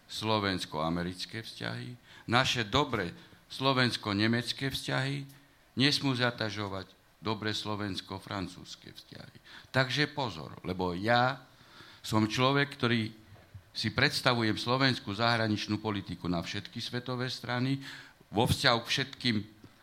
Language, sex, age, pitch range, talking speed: Slovak, male, 60-79, 100-125 Hz, 95 wpm